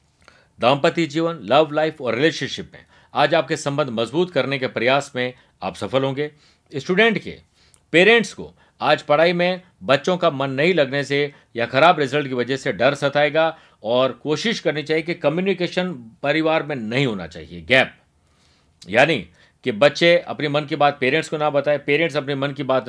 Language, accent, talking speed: Hindi, native, 180 wpm